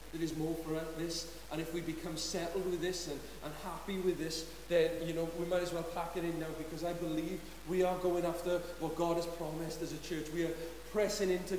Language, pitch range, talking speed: English, 150-180 Hz, 240 wpm